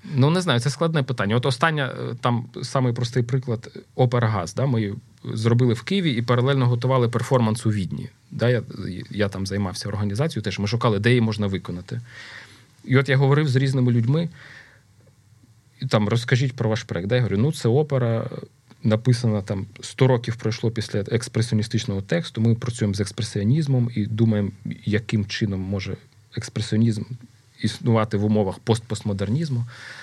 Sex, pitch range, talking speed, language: male, 105-125 Hz, 155 wpm, Ukrainian